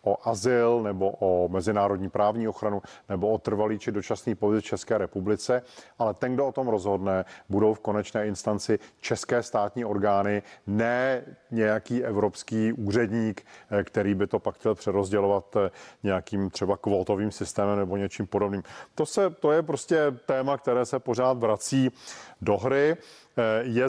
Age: 40-59